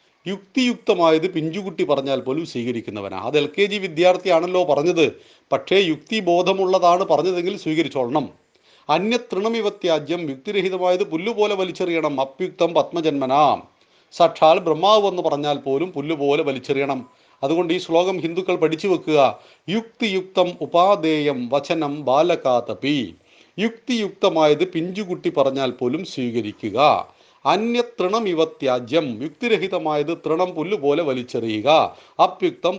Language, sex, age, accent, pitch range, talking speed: Malayalam, male, 40-59, native, 140-180 Hz, 90 wpm